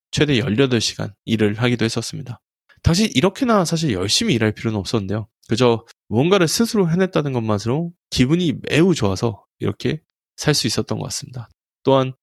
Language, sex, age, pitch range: Korean, male, 20-39, 110-160 Hz